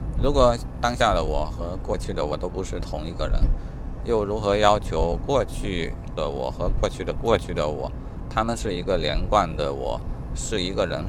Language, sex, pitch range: Chinese, male, 75-110 Hz